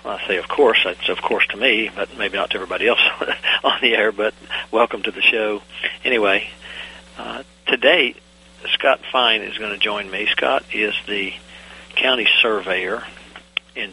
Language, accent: English, American